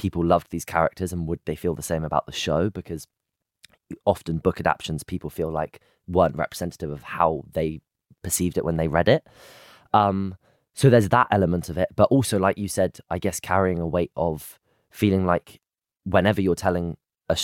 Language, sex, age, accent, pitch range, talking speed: English, male, 20-39, British, 80-95 Hz, 190 wpm